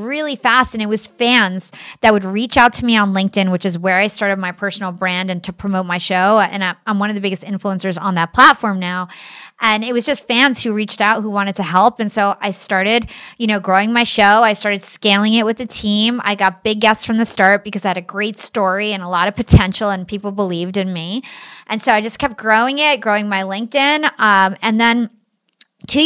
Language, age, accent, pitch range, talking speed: English, 20-39, American, 195-230 Hz, 240 wpm